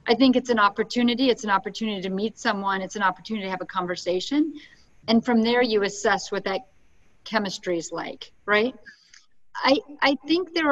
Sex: female